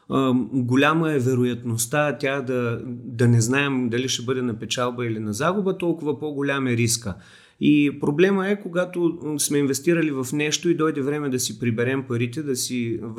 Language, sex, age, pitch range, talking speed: Bulgarian, male, 30-49, 120-165 Hz, 170 wpm